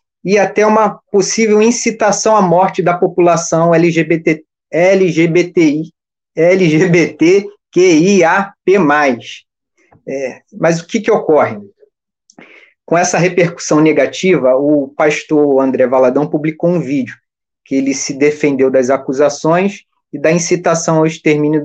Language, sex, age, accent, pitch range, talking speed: Portuguese, male, 20-39, Brazilian, 150-200 Hz, 110 wpm